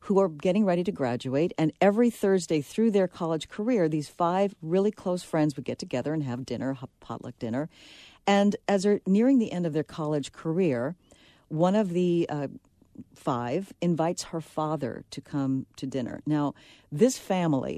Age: 50-69